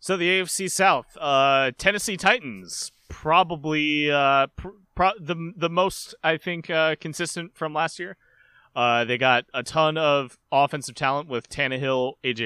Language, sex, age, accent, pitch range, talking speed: English, male, 30-49, American, 120-160 Hz, 155 wpm